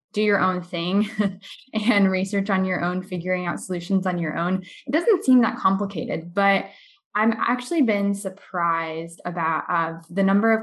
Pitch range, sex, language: 175-215 Hz, female, English